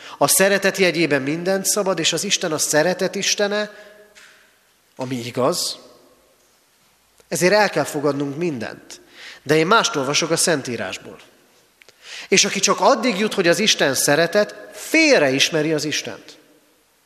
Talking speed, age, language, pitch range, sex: 130 wpm, 40-59, Hungarian, 140-195 Hz, male